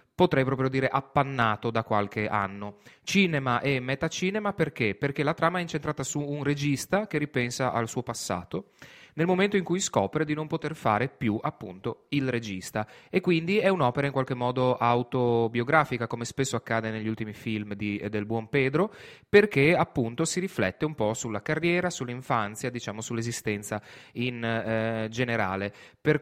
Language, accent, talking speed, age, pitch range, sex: Italian, native, 160 wpm, 30-49, 110-145 Hz, male